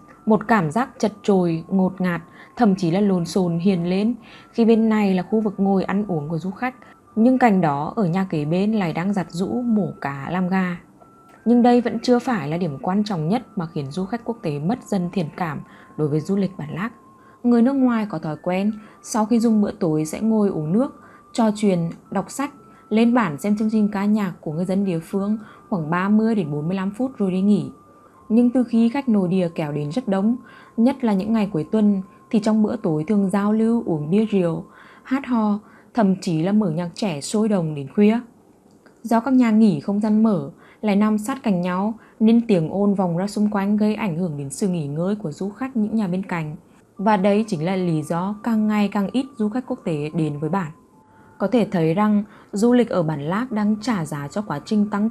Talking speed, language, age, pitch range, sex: 230 wpm, Vietnamese, 20-39, 180-225 Hz, female